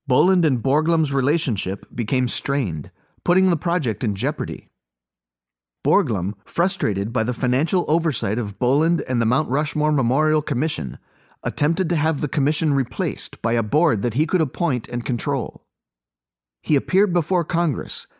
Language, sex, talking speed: English, male, 145 wpm